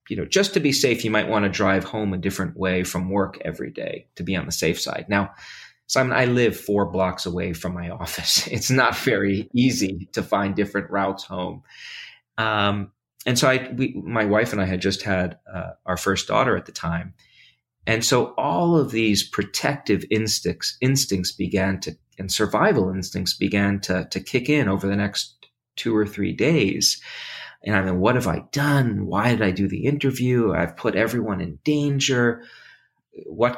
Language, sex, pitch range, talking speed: English, male, 95-120 Hz, 190 wpm